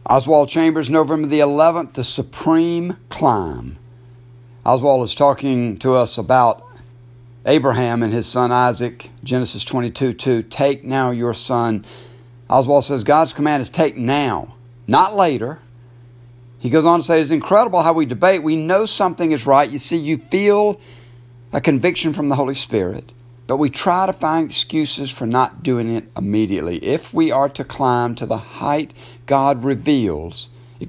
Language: English